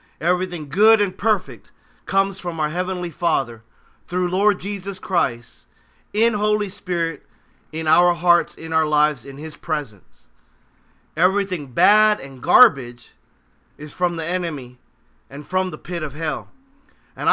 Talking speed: 140 wpm